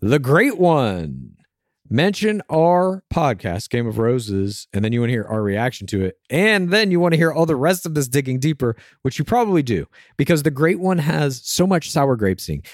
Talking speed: 210 wpm